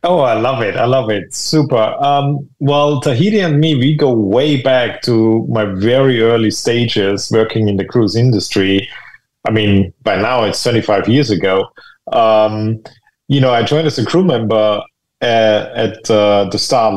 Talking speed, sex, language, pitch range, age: 175 wpm, male, English, 105-125 Hz, 30-49